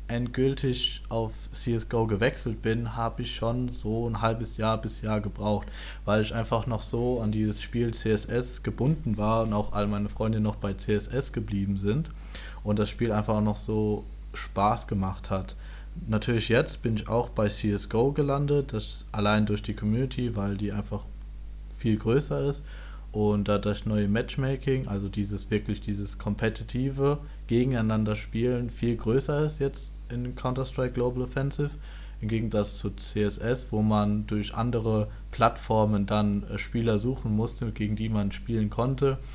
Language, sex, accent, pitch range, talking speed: German, male, German, 105-120 Hz, 155 wpm